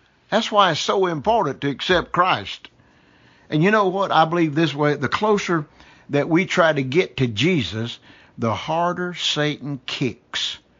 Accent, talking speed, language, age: American, 160 wpm, English, 50-69